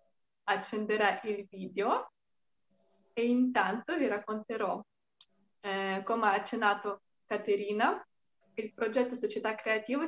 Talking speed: 95 wpm